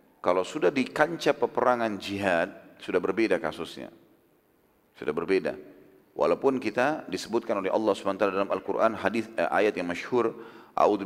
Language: Indonesian